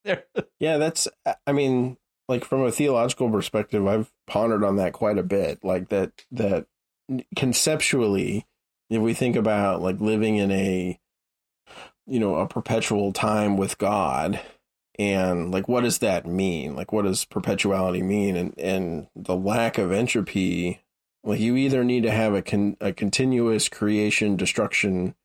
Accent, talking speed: American, 150 wpm